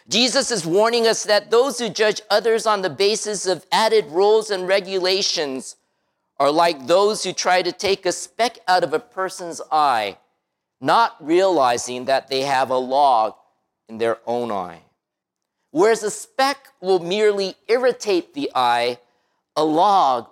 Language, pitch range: Japanese, 150-205 Hz